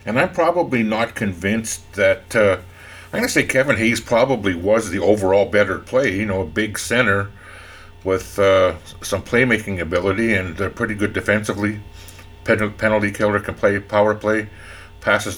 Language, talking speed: English, 160 wpm